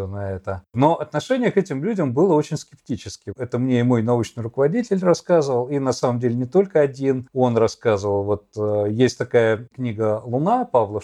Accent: native